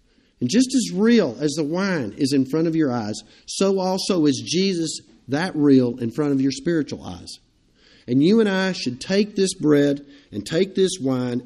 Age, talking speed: 50-69, 195 wpm